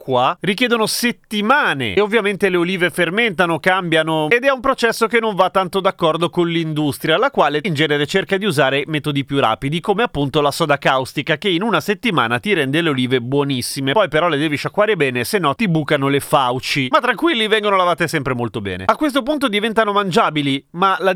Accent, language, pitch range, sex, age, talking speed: native, Italian, 145-200 Hz, male, 30-49, 195 wpm